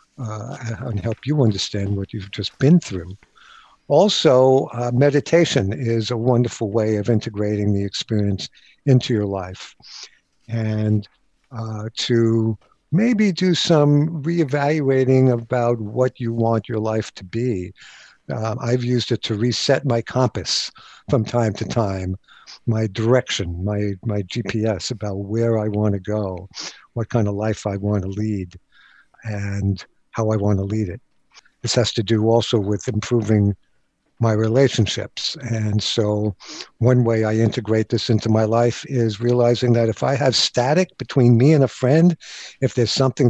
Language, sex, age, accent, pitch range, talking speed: English, male, 60-79, American, 105-130 Hz, 155 wpm